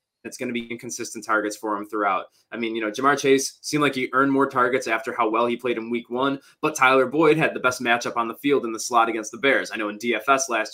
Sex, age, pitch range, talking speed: male, 20-39, 110-135 Hz, 280 wpm